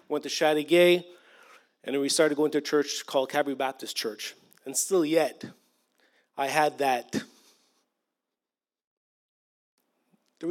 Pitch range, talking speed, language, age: 140-195 Hz, 125 wpm, English, 30-49